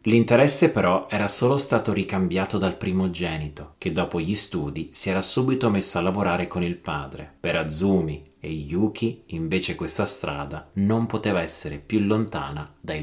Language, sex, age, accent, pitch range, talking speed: Italian, male, 30-49, native, 80-110 Hz, 155 wpm